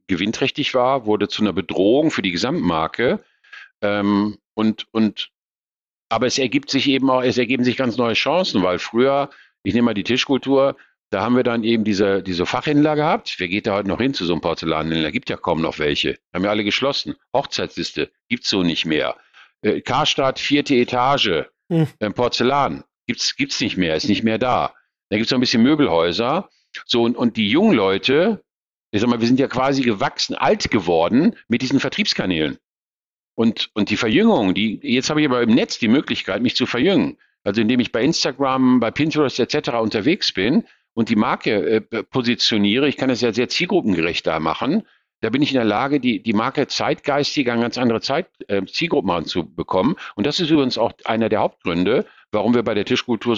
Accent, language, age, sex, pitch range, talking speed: German, German, 50-69, male, 105-135 Hz, 200 wpm